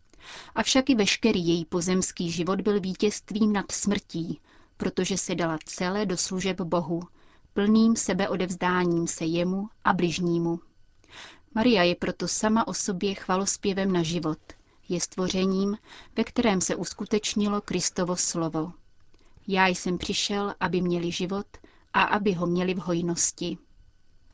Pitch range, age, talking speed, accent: 170-205 Hz, 30-49, 130 wpm, native